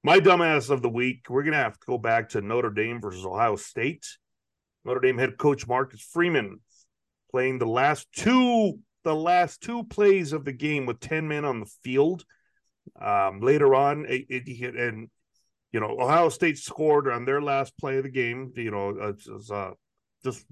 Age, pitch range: 40-59, 125-175 Hz